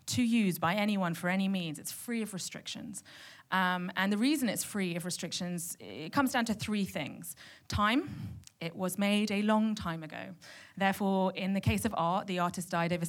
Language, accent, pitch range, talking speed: English, British, 170-205 Hz, 195 wpm